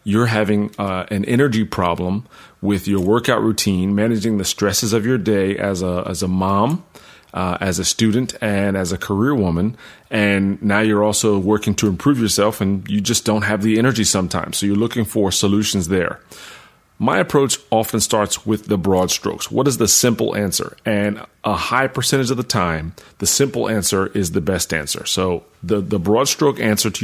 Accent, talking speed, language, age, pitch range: American, 190 wpm, English, 30-49, 100-115 Hz